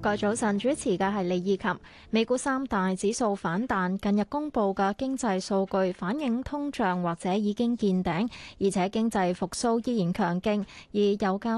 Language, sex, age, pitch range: Chinese, female, 20-39, 190-245 Hz